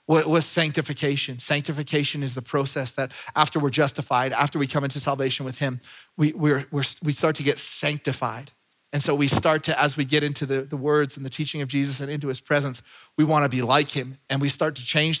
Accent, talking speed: American, 230 wpm